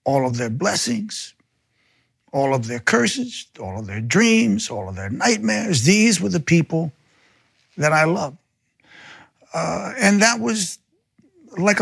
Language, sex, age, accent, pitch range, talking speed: English, male, 60-79, American, 130-195 Hz, 140 wpm